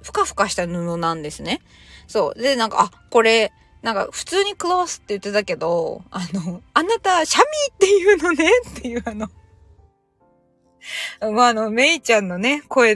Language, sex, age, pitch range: Japanese, female, 20-39, 175-255 Hz